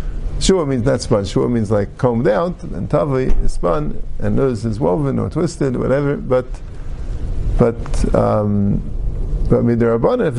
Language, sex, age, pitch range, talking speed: English, male, 50-69, 110-150 Hz, 160 wpm